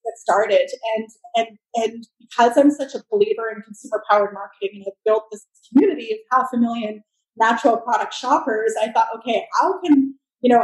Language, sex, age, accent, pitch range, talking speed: English, female, 20-39, American, 205-240 Hz, 185 wpm